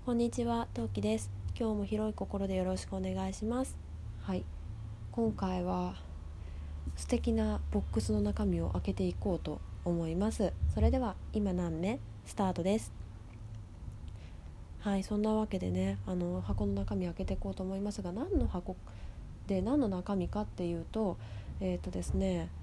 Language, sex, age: Japanese, female, 20-39